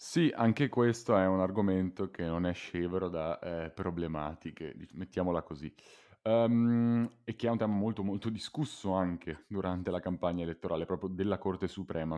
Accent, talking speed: native, 165 wpm